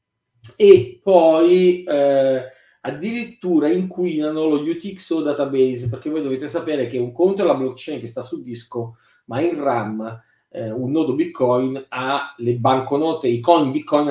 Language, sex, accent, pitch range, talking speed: Italian, male, native, 125-165 Hz, 150 wpm